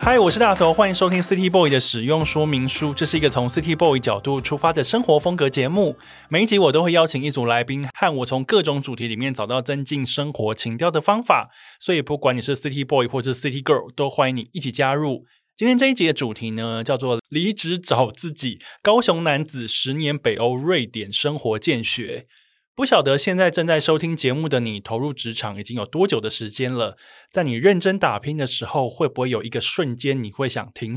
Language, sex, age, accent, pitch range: Chinese, male, 20-39, native, 120-165 Hz